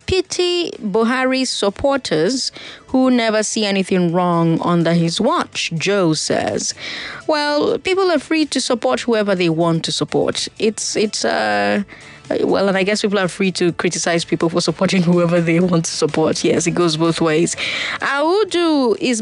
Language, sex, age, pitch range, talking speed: English, female, 20-39, 165-240 Hz, 160 wpm